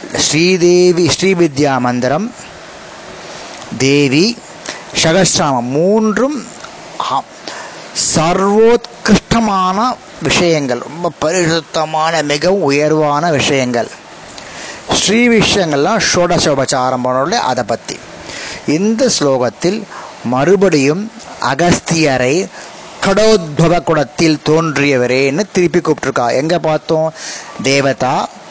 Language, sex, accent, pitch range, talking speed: Tamil, male, native, 145-195 Hz, 60 wpm